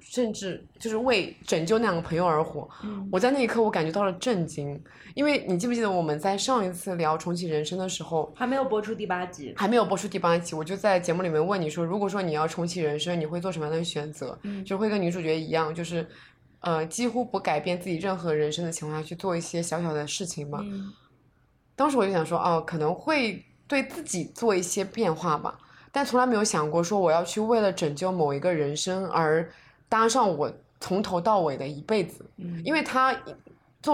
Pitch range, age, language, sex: 165-215 Hz, 20-39, Chinese, female